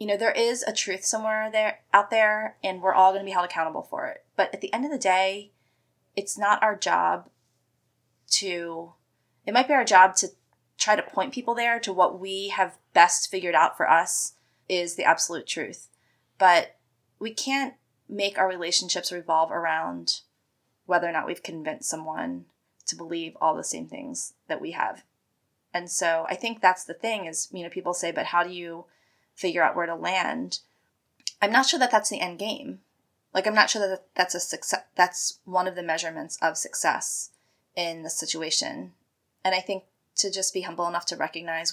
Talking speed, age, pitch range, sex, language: 195 wpm, 20-39, 165-200 Hz, female, English